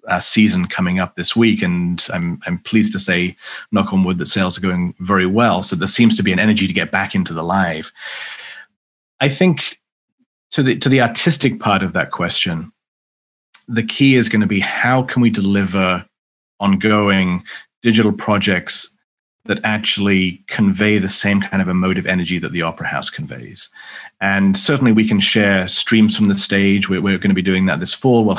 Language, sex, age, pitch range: English, male, 30-49, 95-115 Hz